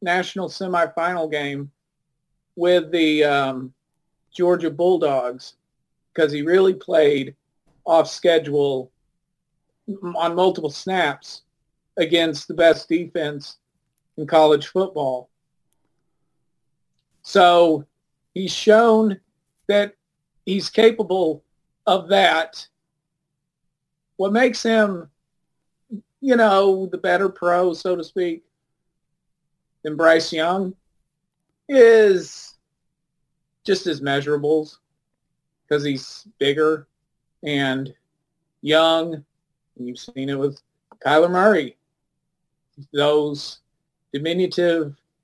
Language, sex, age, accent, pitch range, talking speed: English, male, 40-59, American, 150-175 Hz, 85 wpm